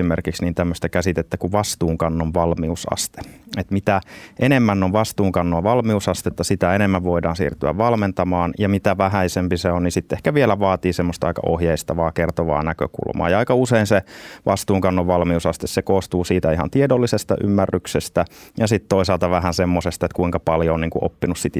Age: 30-49